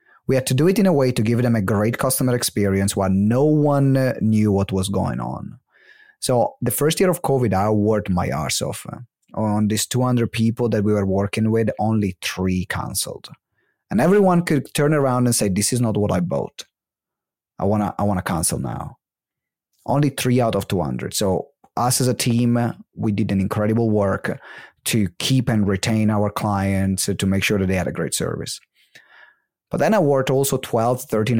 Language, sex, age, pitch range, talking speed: English, male, 30-49, 100-125 Hz, 195 wpm